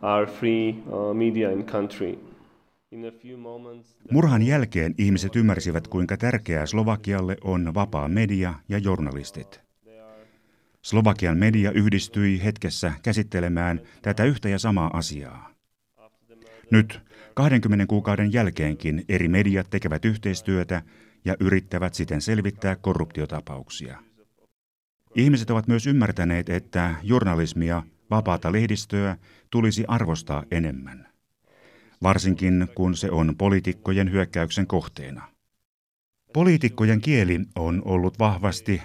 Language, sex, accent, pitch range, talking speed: Finnish, male, native, 90-110 Hz, 90 wpm